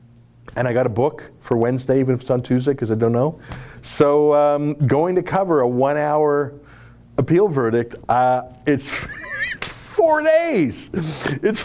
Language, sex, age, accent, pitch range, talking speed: English, male, 40-59, American, 115-150 Hz, 150 wpm